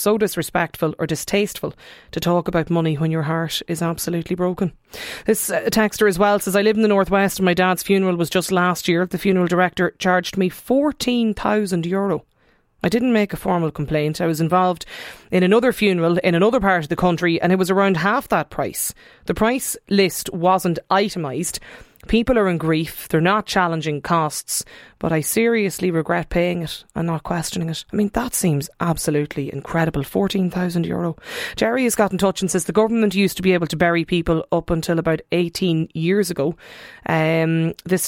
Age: 30-49